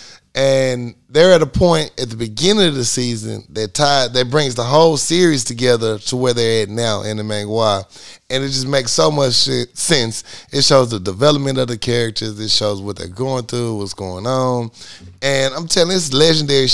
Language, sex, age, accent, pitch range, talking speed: English, male, 30-49, American, 105-135 Hz, 205 wpm